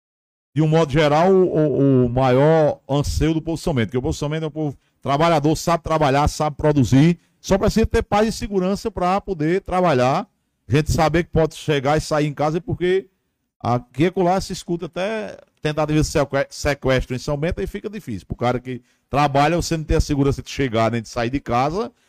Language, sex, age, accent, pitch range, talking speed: Portuguese, male, 50-69, Brazilian, 125-160 Hz, 205 wpm